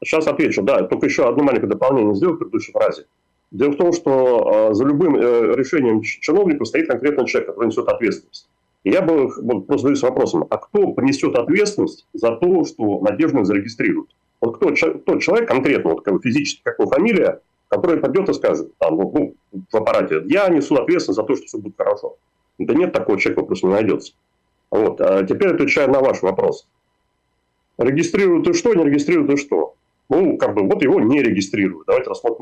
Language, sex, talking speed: Russian, male, 185 wpm